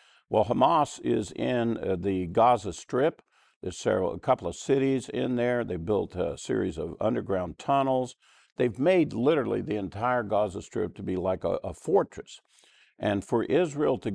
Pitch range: 100-120 Hz